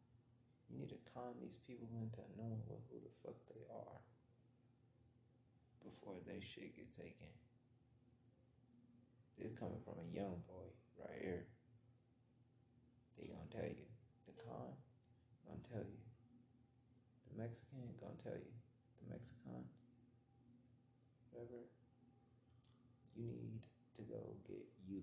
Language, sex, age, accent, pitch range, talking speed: English, male, 30-49, American, 95-125 Hz, 120 wpm